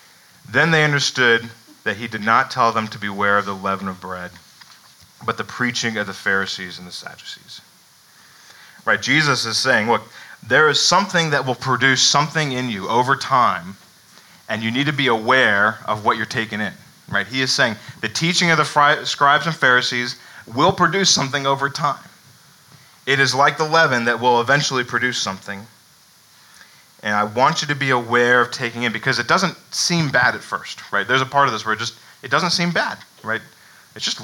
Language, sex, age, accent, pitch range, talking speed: English, male, 30-49, American, 110-145 Hz, 195 wpm